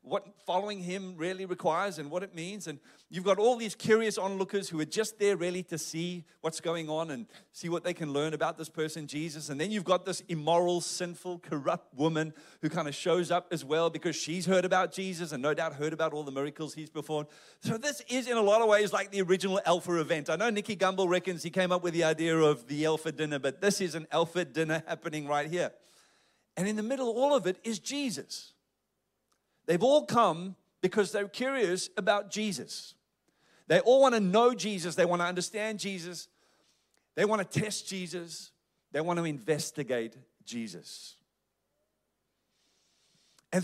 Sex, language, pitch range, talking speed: male, English, 160-205 Hz, 195 wpm